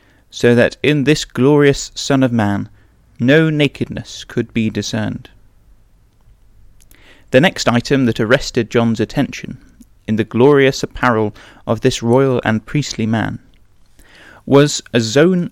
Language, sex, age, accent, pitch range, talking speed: English, male, 30-49, British, 105-135 Hz, 130 wpm